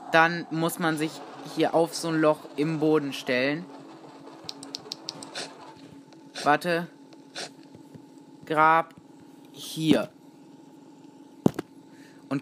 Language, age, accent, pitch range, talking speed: German, 20-39, German, 150-250 Hz, 75 wpm